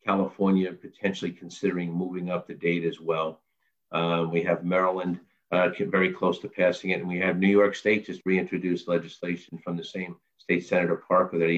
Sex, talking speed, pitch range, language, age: male, 185 wpm, 85-100 Hz, English, 50-69